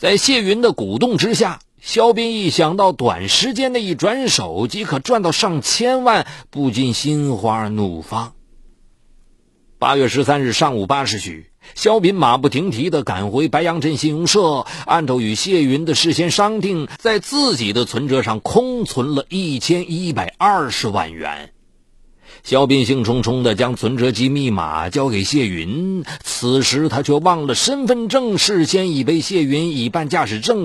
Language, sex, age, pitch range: Chinese, male, 50-69, 135-220 Hz